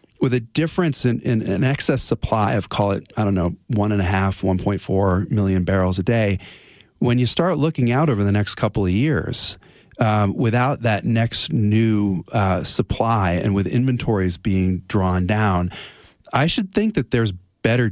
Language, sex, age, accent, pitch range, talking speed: English, male, 30-49, American, 95-120 Hz, 180 wpm